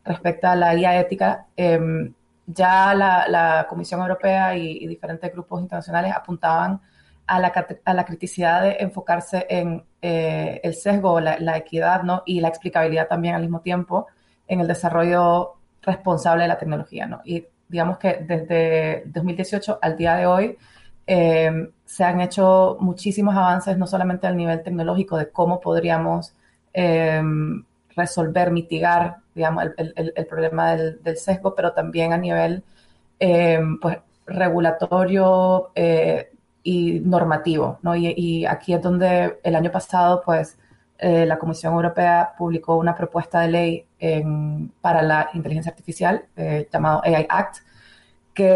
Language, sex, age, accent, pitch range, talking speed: Spanish, female, 30-49, Venezuelan, 165-185 Hz, 140 wpm